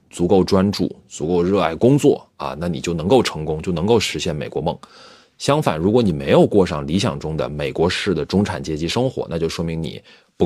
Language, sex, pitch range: Chinese, male, 90-130 Hz